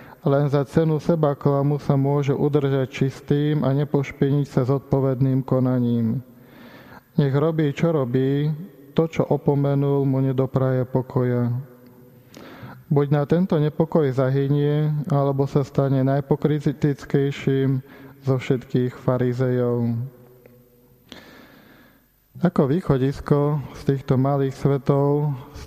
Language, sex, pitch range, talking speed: Slovak, male, 130-145 Hz, 100 wpm